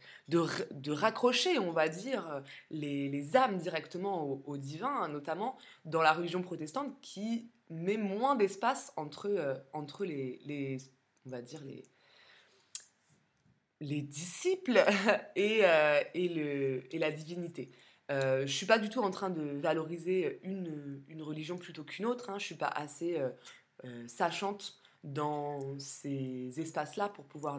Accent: French